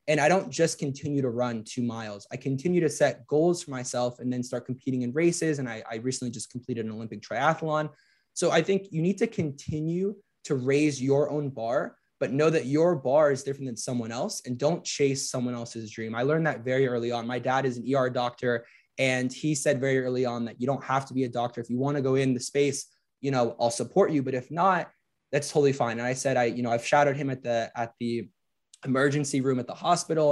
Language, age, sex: English, 20-39, male